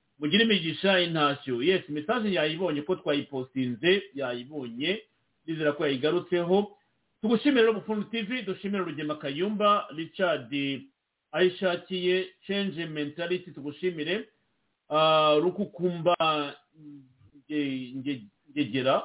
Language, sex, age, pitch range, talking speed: English, male, 50-69, 150-200 Hz, 70 wpm